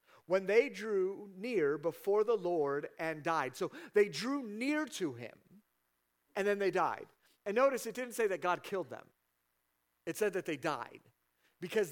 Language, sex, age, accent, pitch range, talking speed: English, male, 50-69, American, 145-210 Hz, 170 wpm